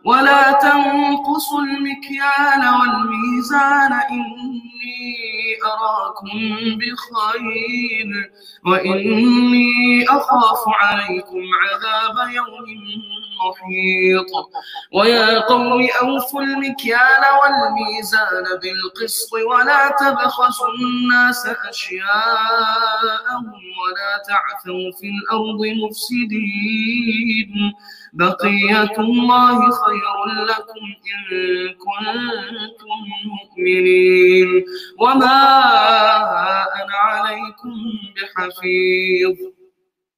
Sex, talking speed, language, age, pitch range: male, 60 wpm, English, 20-39, 210-275 Hz